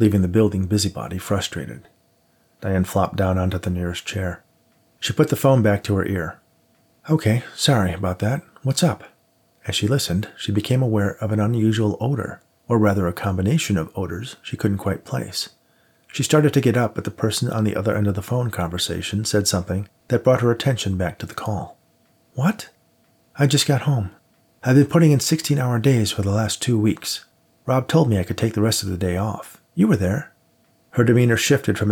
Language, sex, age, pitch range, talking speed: English, male, 40-59, 100-130 Hz, 200 wpm